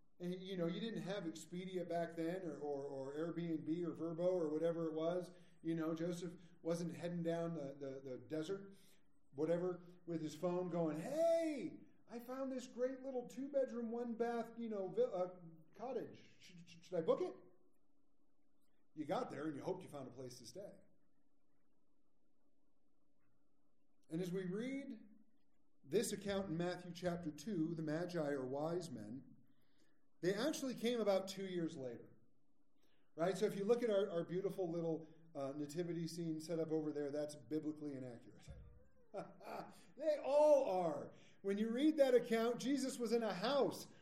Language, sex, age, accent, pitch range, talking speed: English, male, 40-59, American, 160-230 Hz, 165 wpm